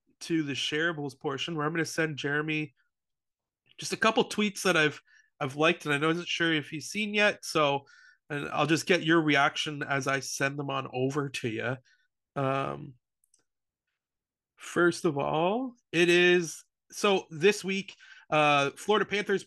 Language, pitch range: English, 140-170 Hz